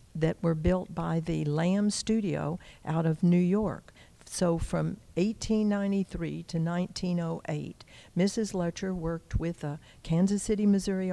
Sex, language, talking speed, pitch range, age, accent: female, English, 130 wpm, 160-195 Hz, 60-79, American